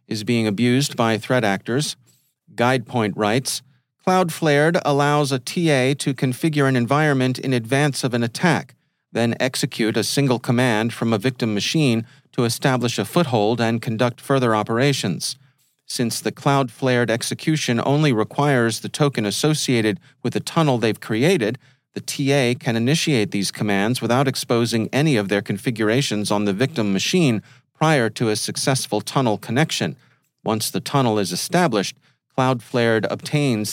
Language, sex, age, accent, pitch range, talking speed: English, male, 40-59, American, 110-140 Hz, 145 wpm